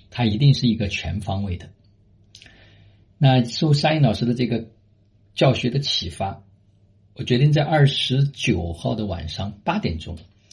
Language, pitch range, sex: Chinese, 95-120 Hz, male